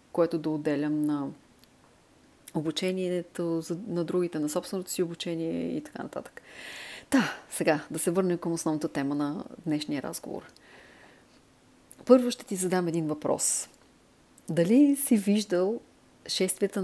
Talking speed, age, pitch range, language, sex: 120 wpm, 30-49, 160-215 Hz, English, female